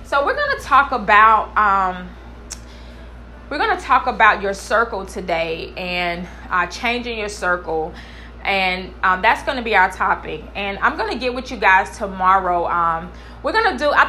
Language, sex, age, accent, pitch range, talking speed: English, female, 20-39, American, 205-250 Hz, 185 wpm